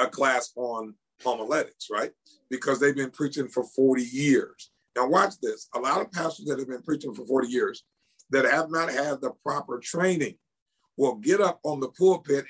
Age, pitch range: 50-69, 140-170 Hz